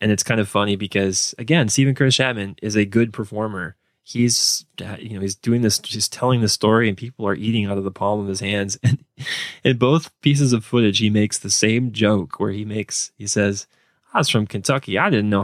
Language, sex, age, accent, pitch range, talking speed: English, male, 20-39, American, 100-130 Hz, 225 wpm